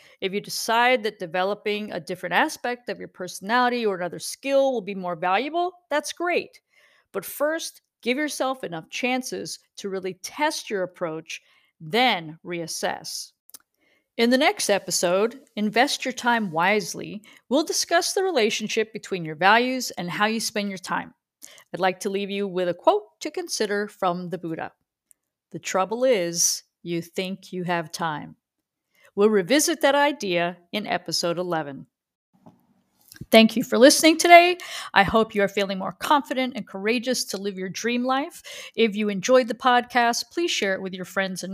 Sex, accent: female, American